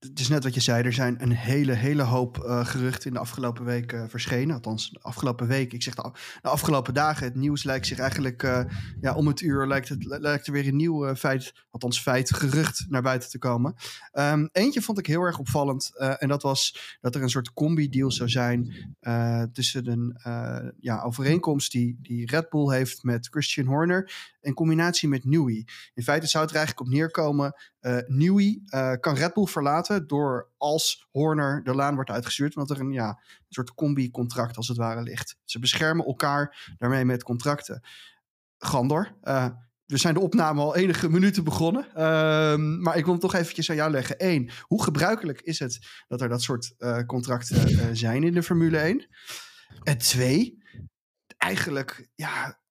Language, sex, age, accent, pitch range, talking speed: Dutch, male, 20-39, Dutch, 125-155 Hz, 200 wpm